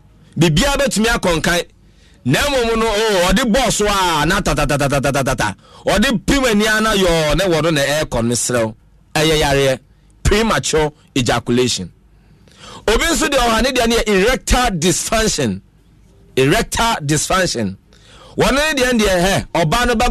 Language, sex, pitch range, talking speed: English, male, 150-235 Hz, 125 wpm